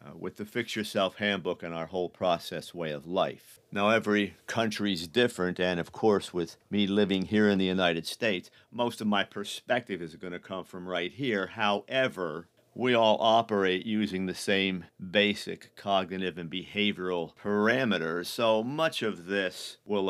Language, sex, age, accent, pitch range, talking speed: English, male, 50-69, American, 90-110 Hz, 165 wpm